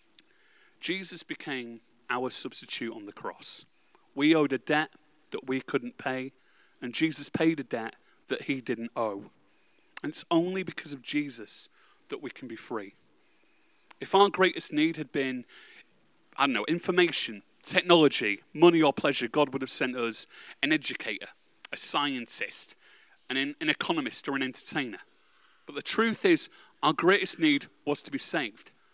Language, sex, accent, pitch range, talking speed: English, male, British, 130-190 Hz, 155 wpm